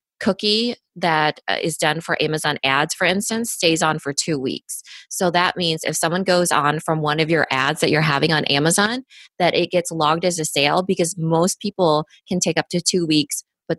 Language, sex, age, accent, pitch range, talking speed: English, female, 20-39, American, 150-180 Hz, 210 wpm